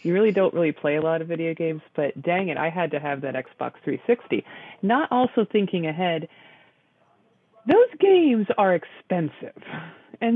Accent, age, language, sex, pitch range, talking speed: American, 30-49, English, female, 150-190 Hz, 170 wpm